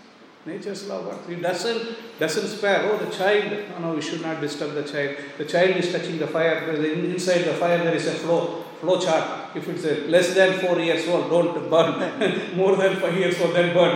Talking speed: 220 wpm